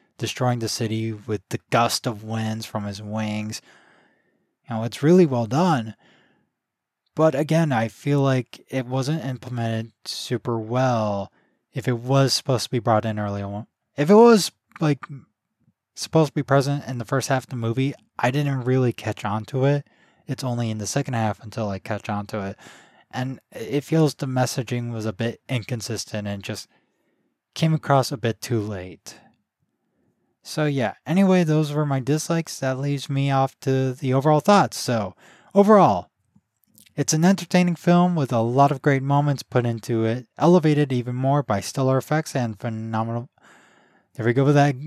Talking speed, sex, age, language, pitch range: 175 wpm, male, 20-39, English, 110-145 Hz